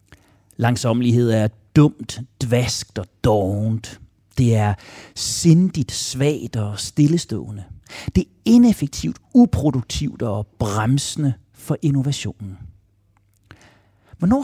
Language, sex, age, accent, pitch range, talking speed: Danish, male, 40-59, native, 105-150 Hz, 85 wpm